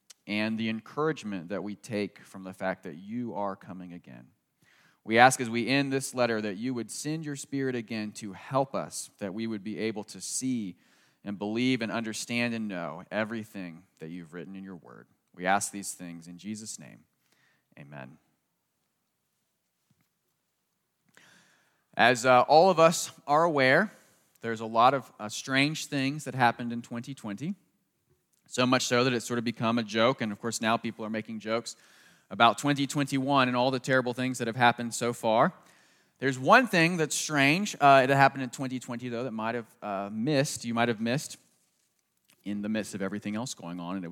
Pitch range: 105-135 Hz